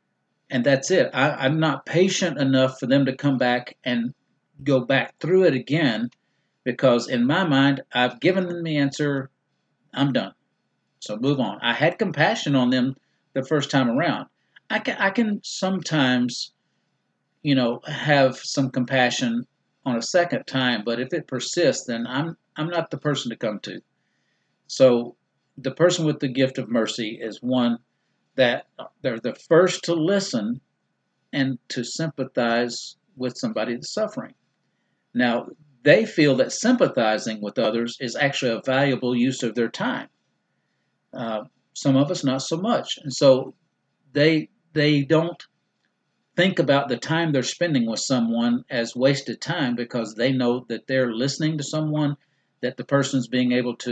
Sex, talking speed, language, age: male, 160 wpm, English, 50-69